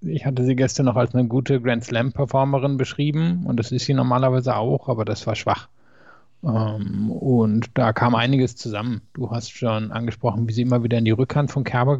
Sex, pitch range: male, 115-135 Hz